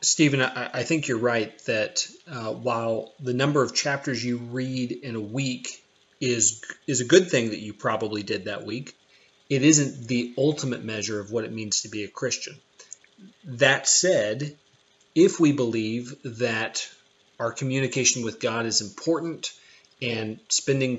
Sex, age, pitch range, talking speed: male, 30-49, 115-140 Hz, 155 wpm